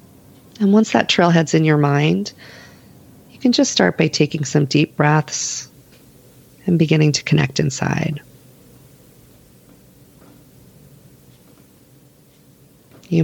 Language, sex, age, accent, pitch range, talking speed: English, female, 40-59, American, 135-165 Hz, 100 wpm